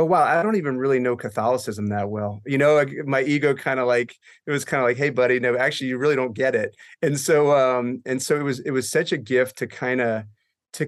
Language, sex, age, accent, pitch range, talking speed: English, male, 30-49, American, 120-145 Hz, 265 wpm